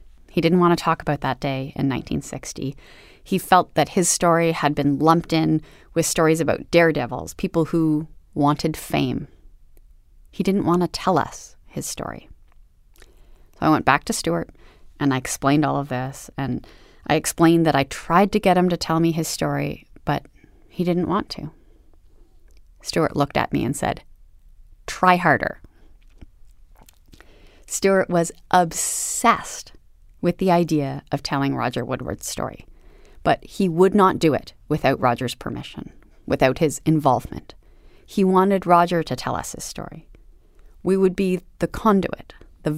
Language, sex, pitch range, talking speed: English, female, 135-175 Hz, 155 wpm